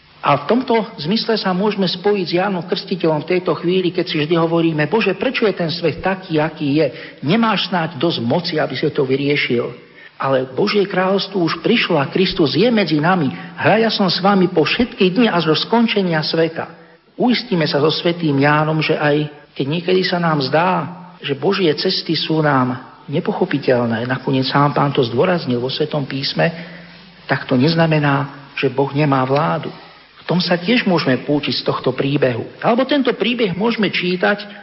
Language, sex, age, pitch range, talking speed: Slovak, male, 50-69, 145-190 Hz, 175 wpm